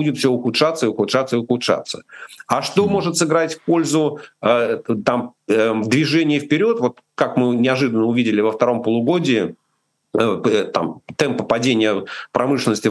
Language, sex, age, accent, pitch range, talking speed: Russian, male, 40-59, native, 115-145 Hz, 125 wpm